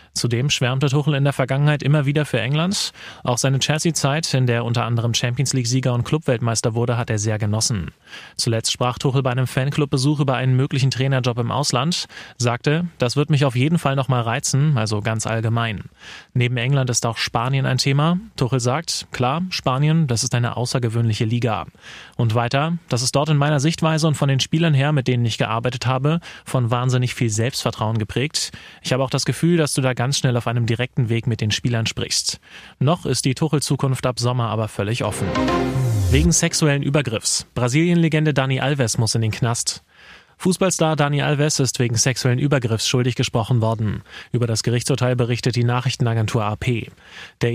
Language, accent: German, German